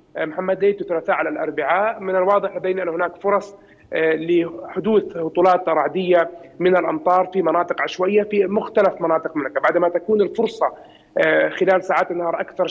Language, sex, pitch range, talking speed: Arabic, male, 160-195 Hz, 140 wpm